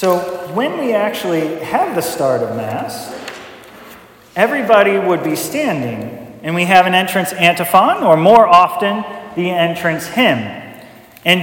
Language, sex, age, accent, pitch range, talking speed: English, male, 30-49, American, 170-205 Hz, 135 wpm